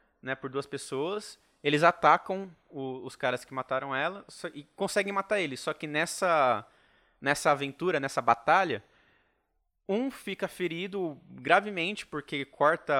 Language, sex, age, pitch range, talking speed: Portuguese, male, 20-39, 140-185 Hz, 140 wpm